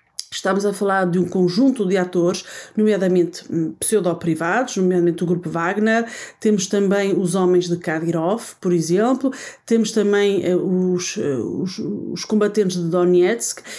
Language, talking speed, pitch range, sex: Portuguese, 140 wpm, 180-230 Hz, female